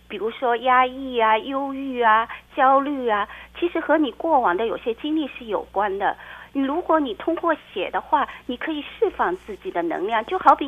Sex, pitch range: female, 235-345 Hz